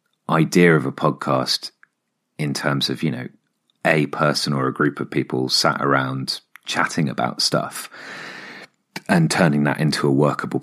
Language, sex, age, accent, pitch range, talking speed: English, male, 30-49, British, 65-75 Hz, 150 wpm